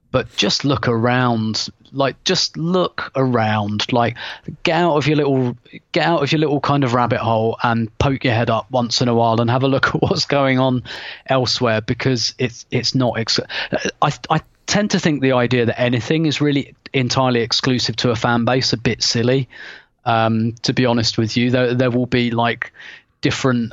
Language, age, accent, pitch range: English, 30-49, British, 120-135 Hz